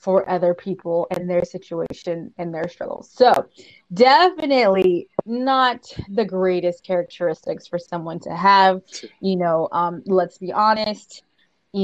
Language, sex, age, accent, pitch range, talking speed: English, female, 20-39, American, 175-200 Hz, 130 wpm